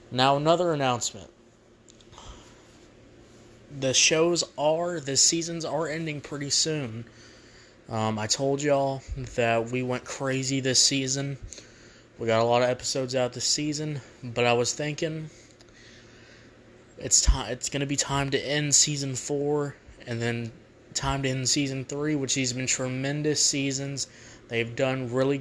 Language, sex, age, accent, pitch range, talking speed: English, male, 20-39, American, 120-140 Hz, 140 wpm